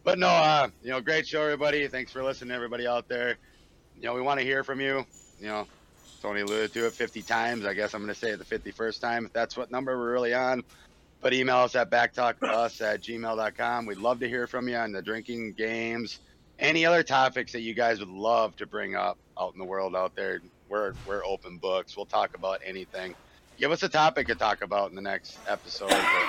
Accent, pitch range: American, 100-125 Hz